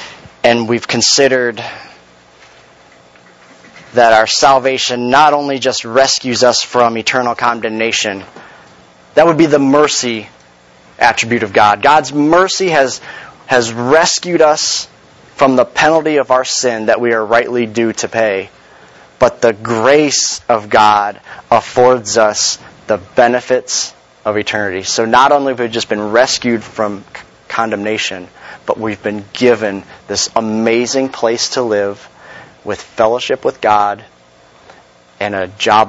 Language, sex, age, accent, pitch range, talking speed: English, male, 30-49, American, 100-125 Hz, 130 wpm